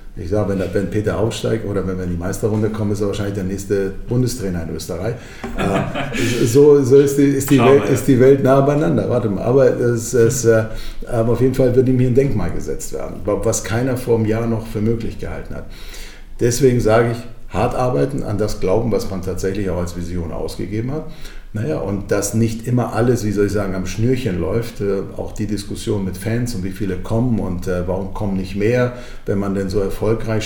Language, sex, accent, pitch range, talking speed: German, male, German, 95-120 Hz, 195 wpm